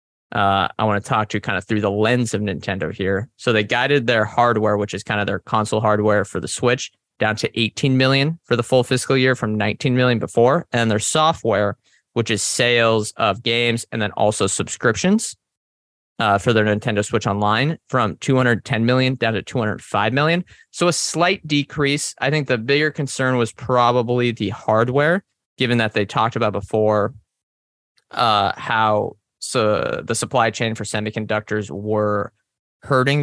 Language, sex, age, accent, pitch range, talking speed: English, male, 20-39, American, 105-130 Hz, 175 wpm